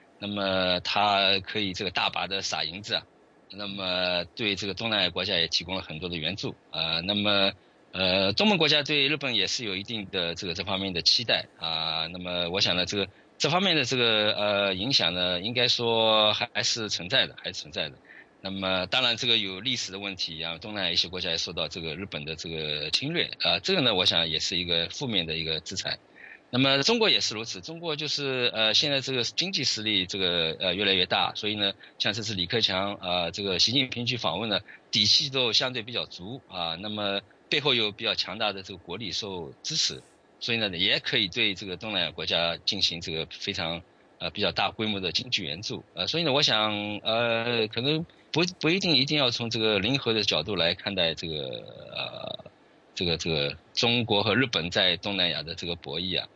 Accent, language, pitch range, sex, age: Chinese, English, 90-115 Hz, male, 20-39